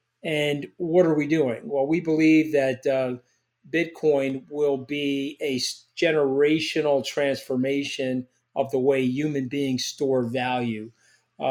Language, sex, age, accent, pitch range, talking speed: English, male, 40-59, American, 130-150 Hz, 125 wpm